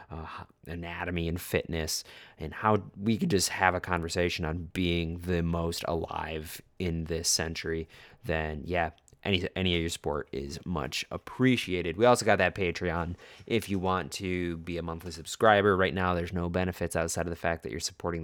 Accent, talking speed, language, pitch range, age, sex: American, 180 wpm, English, 80-95 Hz, 20-39, male